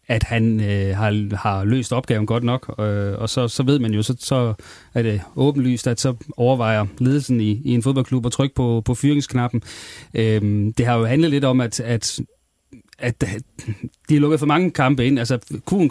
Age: 30-49